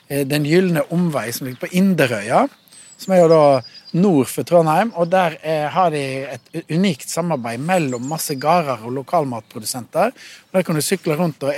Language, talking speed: English, 170 wpm